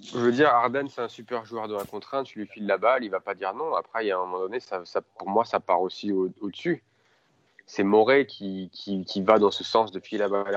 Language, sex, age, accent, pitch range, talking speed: French, male, 20-39, French, 95-115 Hz, 285 wpm